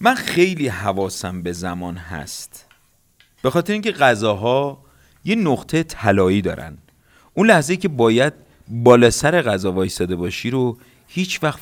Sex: male